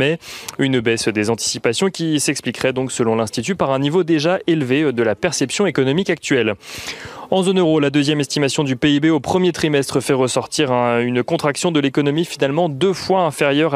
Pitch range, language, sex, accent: 125-155 Hz, French, male, French